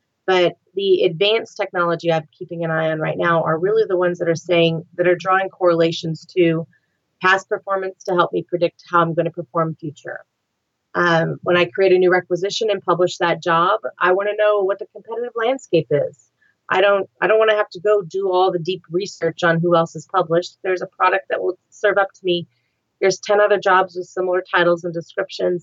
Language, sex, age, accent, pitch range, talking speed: English, female, 30-49, American, 165-190 Hz, 215 wpm